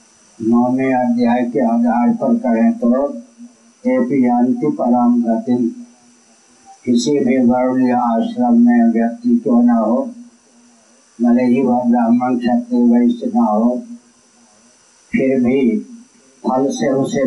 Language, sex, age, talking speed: Hindi, male, 60-79, 90 wpm